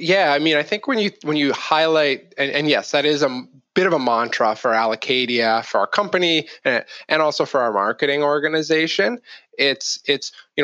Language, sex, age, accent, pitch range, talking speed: English, male, 20-39, American, 135-160 Hz, 190 wpm